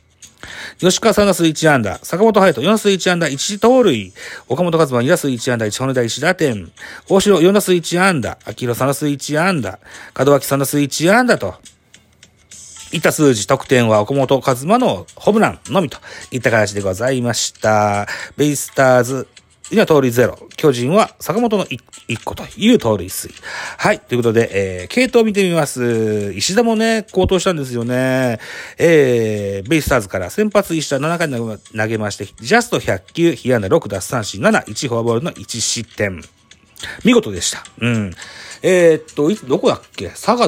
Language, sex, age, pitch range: Japanese, male, 40-59, 115-180 Hz